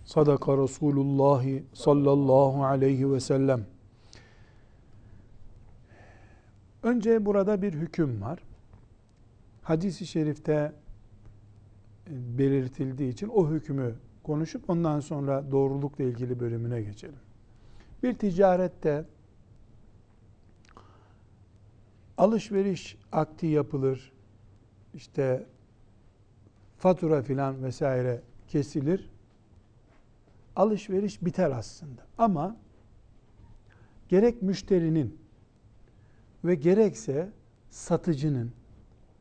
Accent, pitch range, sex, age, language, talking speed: native, 110-170 Hz, male, 60-79, Turkish, 65 wpm